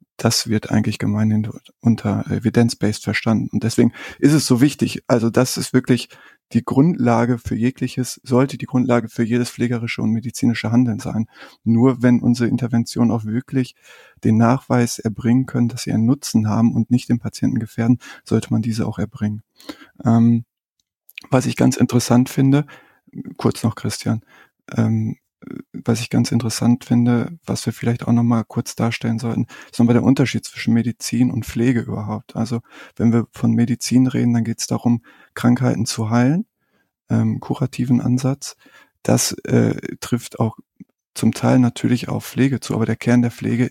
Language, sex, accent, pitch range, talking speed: German, male, German, 115-125 Hz, 160 wpm